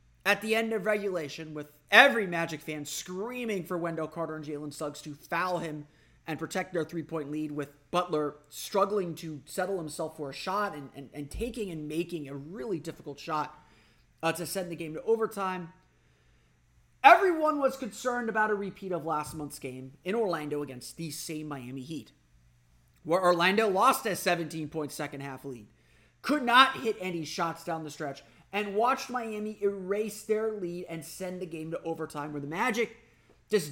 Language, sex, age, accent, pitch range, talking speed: English, male, 30-49, American, 150-215 Hz, 175 wpm